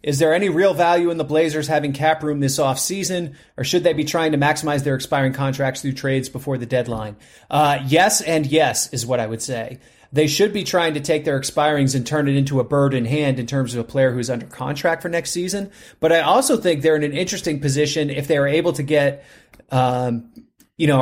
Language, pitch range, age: English, 130-165 Hz, 30-49